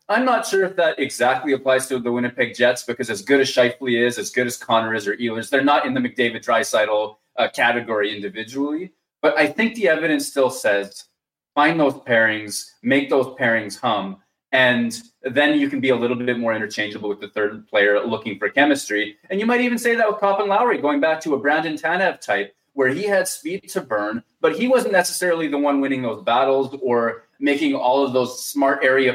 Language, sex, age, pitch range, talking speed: English, male, 20-39, 115-155 Hz, 210 wpm